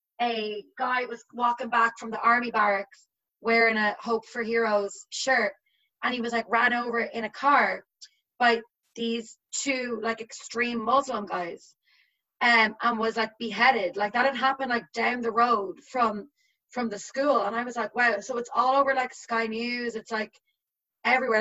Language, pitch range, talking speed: English, 230-260 Hz, 175 wpm